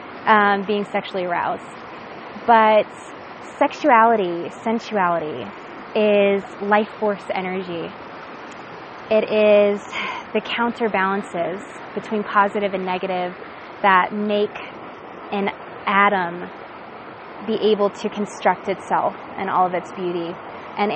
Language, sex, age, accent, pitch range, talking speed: English, female, 20-39, American, 190-215 Hz, 95 wpm